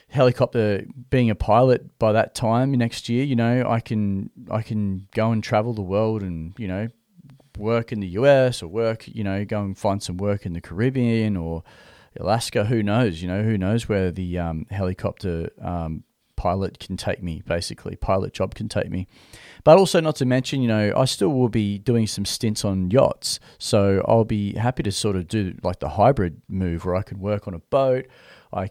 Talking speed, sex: 205 wpm, male